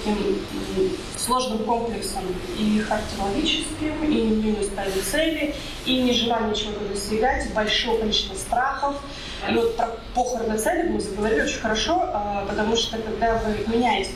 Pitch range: 215-275 Hz